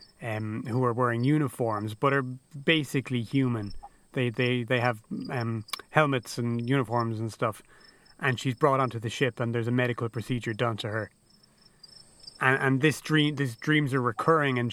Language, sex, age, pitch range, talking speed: English, male, 30-49, 120-150 Hz, 170 wpm